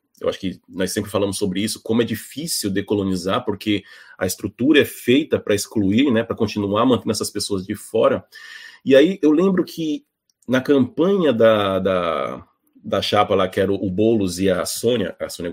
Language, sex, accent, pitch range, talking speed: Portuguese, male, Brazilian, 110-165 Hz, 180 wpm